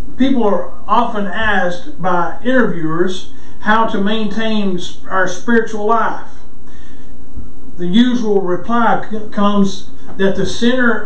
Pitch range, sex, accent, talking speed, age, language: 175-220 Hz, male, American, 105 wpm, 50-69, English